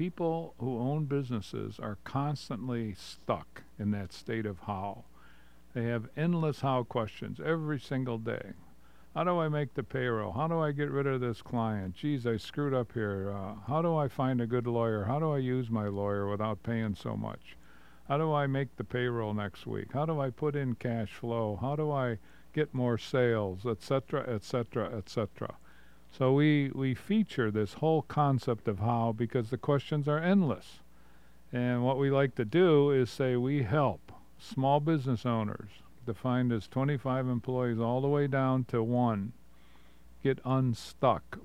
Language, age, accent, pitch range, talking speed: English, 50-69, American, 110-140 Hz, 175 wpm